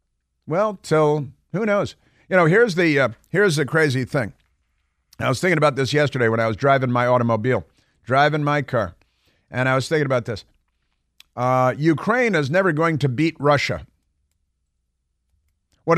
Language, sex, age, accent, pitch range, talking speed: English, male, 50-69, American, 115-155 Hz, 160 wpm